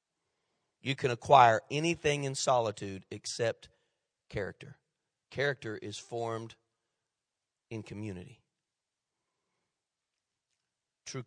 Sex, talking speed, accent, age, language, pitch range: male, 75 wpm, American, 40-59, English, 105-135 Hz